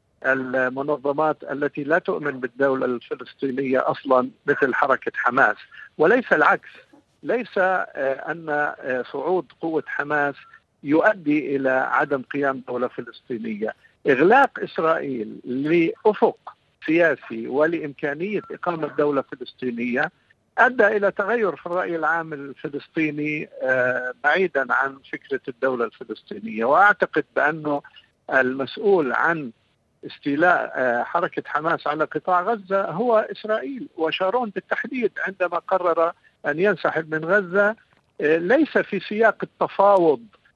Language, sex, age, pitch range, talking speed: Arabic, male, 50-69, 140-195 Hz, 100 wpm